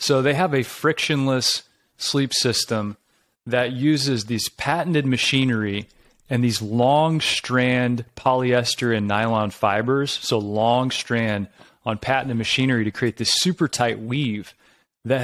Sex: male